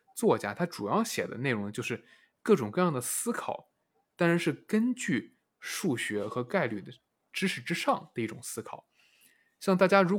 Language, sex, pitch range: Chinese, male, 120-175 Hz